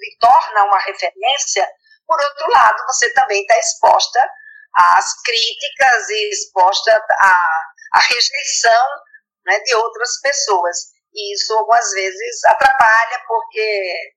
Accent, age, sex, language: Brazilian, 50-69, female, Portuguese